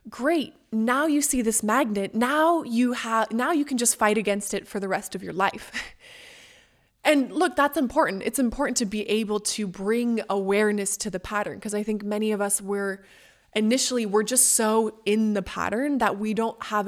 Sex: female